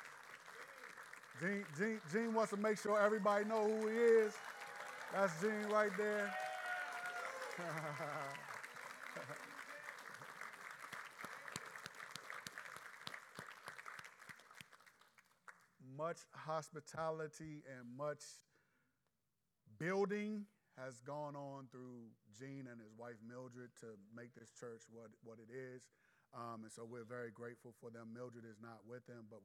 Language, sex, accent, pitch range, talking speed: English, male, American, 115-150 Hz, 105 wpm